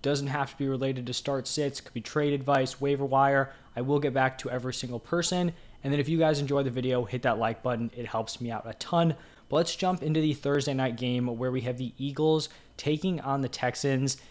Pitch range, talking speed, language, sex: 125-145 Hz, 240 wpm, English, male